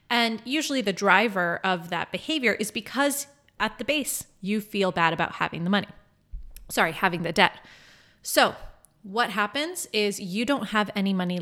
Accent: American